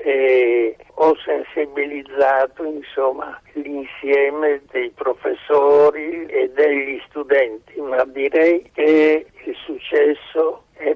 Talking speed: 90 wpm